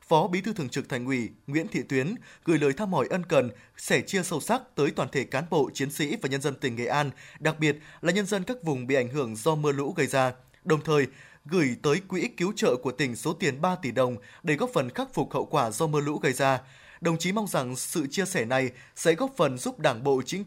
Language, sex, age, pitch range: Vietnamese, male, 20-39, 135-175 Hz